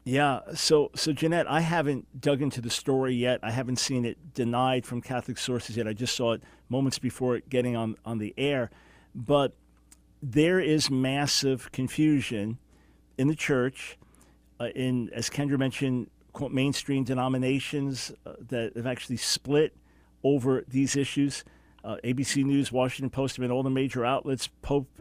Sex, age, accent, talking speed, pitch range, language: male, 40-59, American, 160 wpm, 120-140 Hz, English